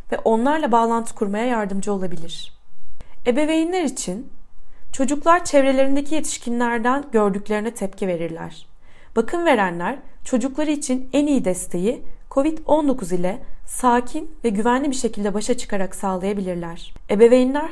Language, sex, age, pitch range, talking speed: Turkish, female, 30-49, 200-280 Hz, 110 wpm